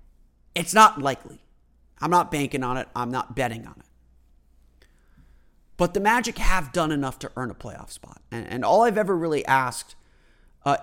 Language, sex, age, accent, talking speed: English, male, 30-49, American, 175 wpm